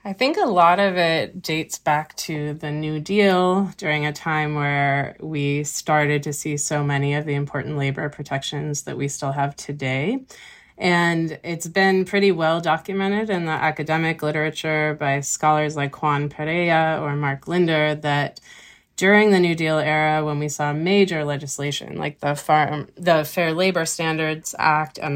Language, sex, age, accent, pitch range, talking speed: English, female, 30-49, American, 145-170 Hz, 165 wpm